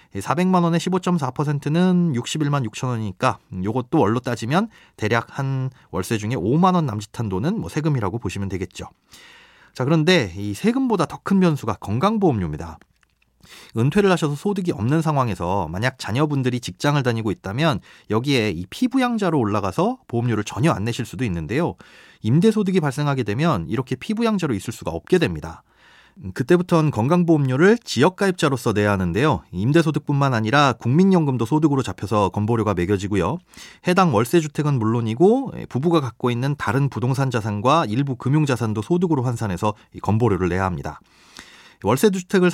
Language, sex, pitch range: Korean, male, 110-165 Hz